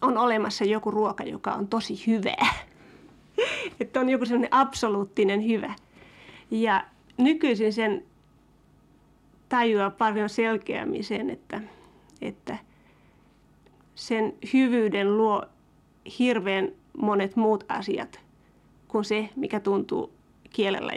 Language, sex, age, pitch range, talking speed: Finnish, female, 30-49, 210-240 Hz, 100 wpm